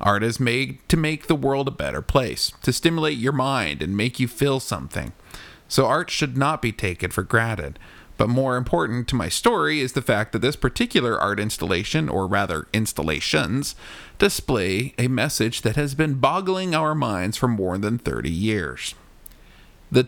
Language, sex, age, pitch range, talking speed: English, male, 40-59, 105-145 Hz, 175 wpm